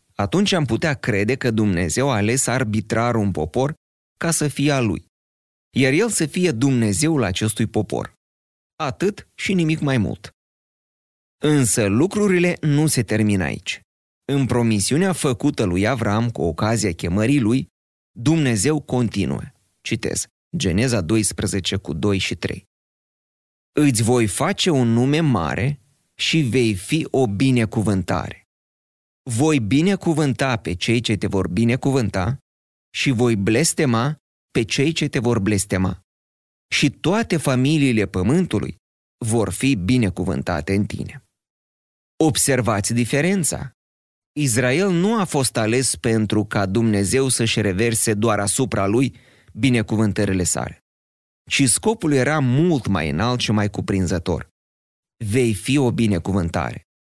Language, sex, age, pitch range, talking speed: Romanian, male, 30-49, 95-135 Hz, 125 wpm